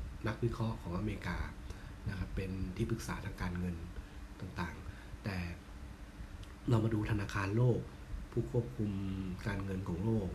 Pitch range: 95-110 Hz